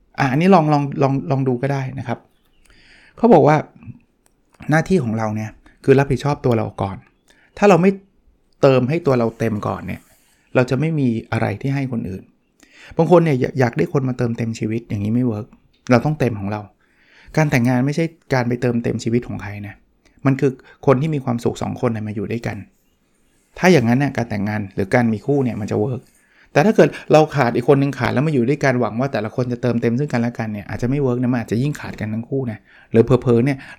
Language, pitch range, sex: Thai, 115-140 Hz, male